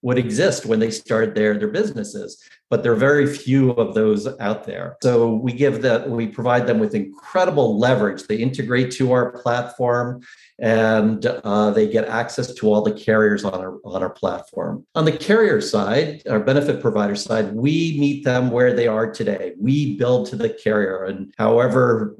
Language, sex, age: English, male, 50-69